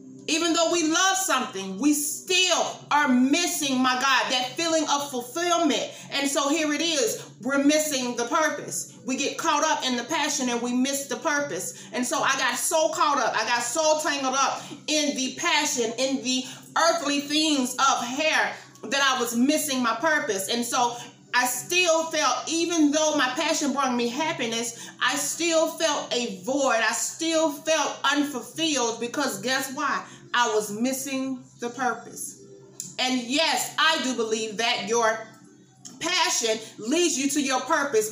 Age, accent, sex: 30-49, American, female